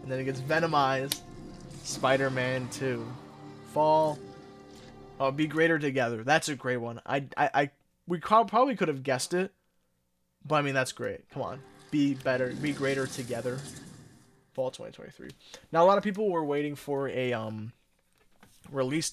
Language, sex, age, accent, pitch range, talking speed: English, male, 20-39, American, 125-155 Hz, 155 wpm